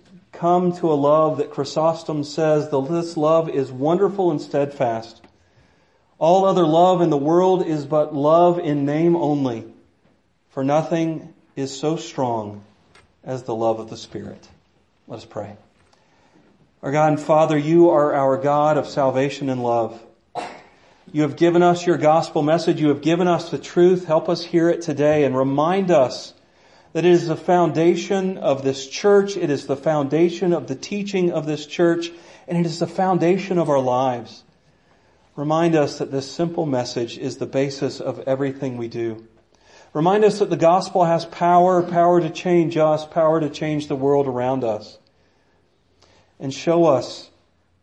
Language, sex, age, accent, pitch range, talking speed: English, male, 40-59, American, 125-165 Hz, 165 wpm